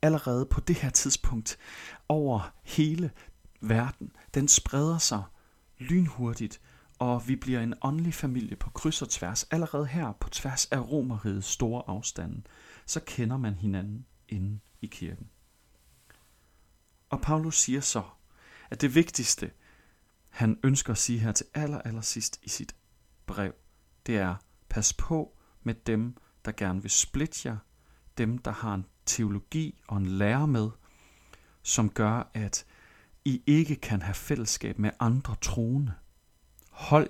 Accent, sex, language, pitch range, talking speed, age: native, male, Danish, 95-135 Hz, 140 wpm, 40-59